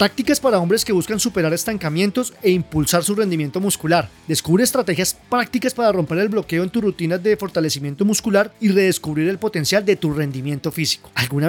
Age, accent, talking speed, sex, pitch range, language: 30-49, Colombian, 180 wpm, male, 160-215 Hz, Spanish